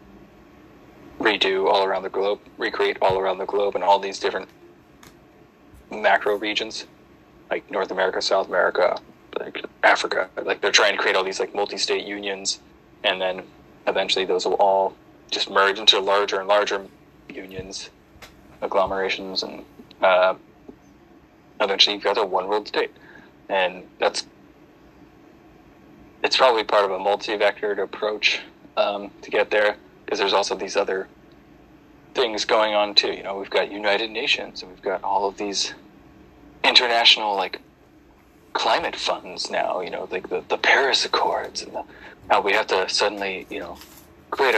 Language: English